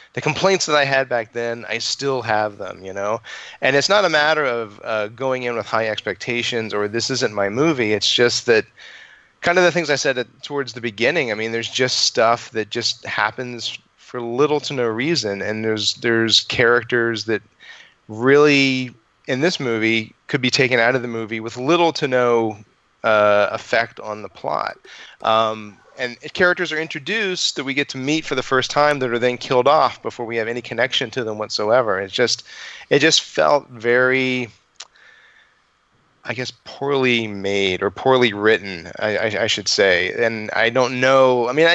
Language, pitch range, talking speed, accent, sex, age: English, 115-140 Hz, 185 wpm, American, male, 30-49